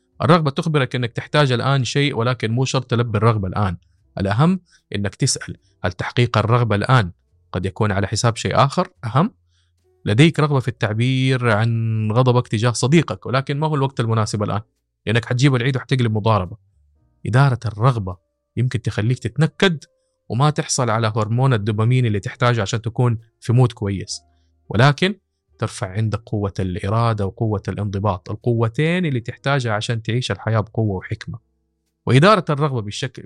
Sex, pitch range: male, 105-135 Hz